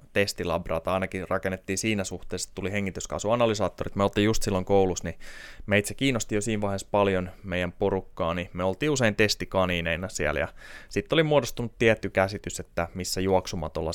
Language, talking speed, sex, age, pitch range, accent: Finnish, 165 wpm, male, 20-39, 90-105 Hz, native